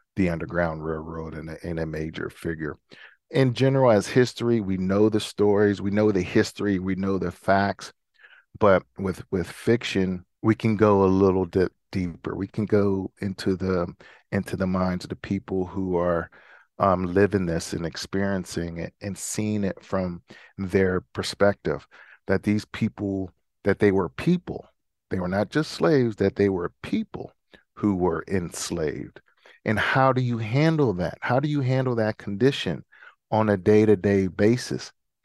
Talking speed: 165 wpm